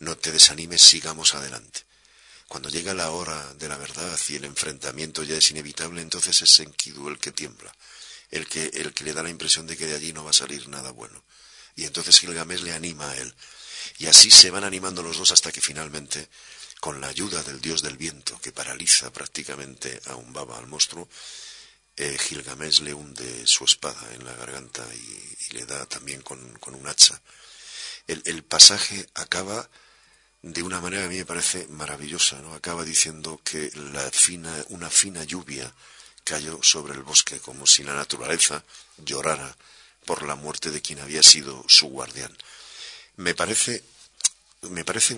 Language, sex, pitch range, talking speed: Spanish, male, 75-85 Hz, 180 wpm